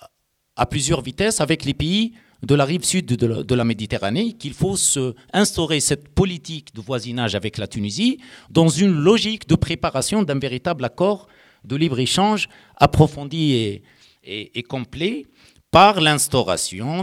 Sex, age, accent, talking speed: male, 50-69, French, 150 wpm